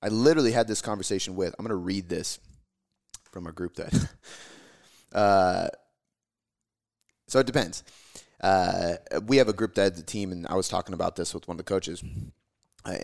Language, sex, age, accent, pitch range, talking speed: English, male, 30-49, American, 90-115 Hz, 180 wpm